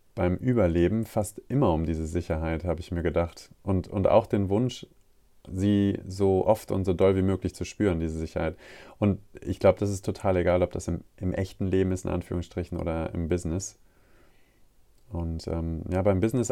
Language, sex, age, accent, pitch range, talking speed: German, male, 30-49, German, 90-110 Hz, 190 wpm